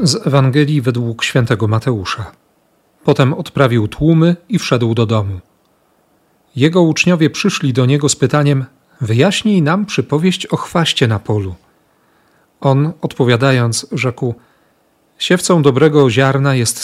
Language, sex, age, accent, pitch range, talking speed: Polish, male, 40-59, native, 115-155 Hz, 120 wpm